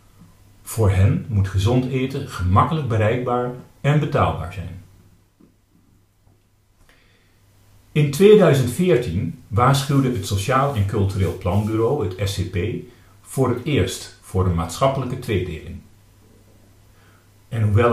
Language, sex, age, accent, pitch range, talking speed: Dutch, male, 40-59, Dutch, 95-125 Hz, 95 wpm